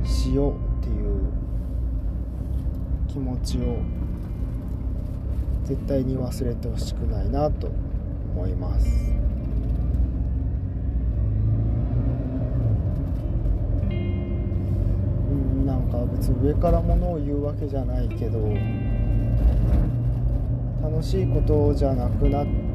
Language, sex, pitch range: Japanese, male, 90-105 Hz